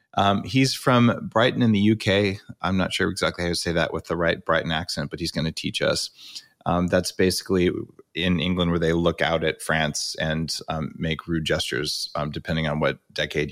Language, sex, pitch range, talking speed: English, male, 90-130 Hz, 210 wpm